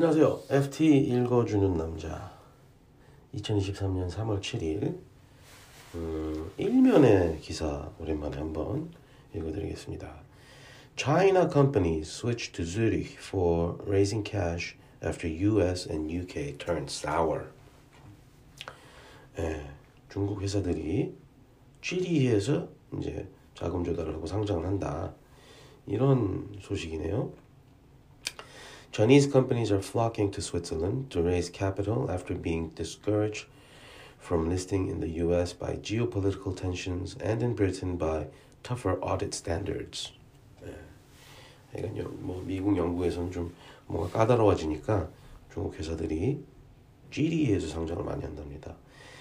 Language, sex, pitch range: Korean, male, 85-125 Hz